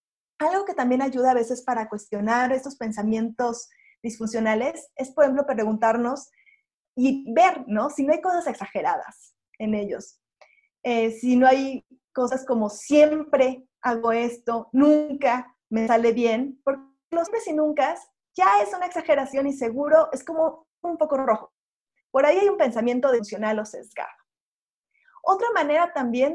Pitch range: 230-285 Hz